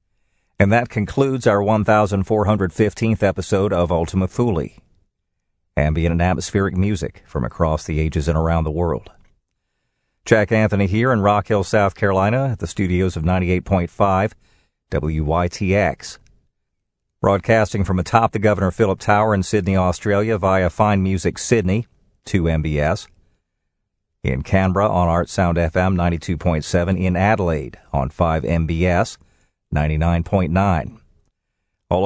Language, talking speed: English, 115 wpm